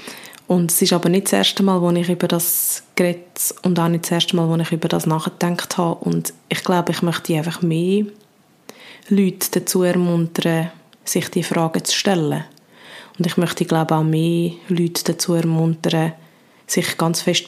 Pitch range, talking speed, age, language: 160-180 Hz, 180 wpm, 20-39, German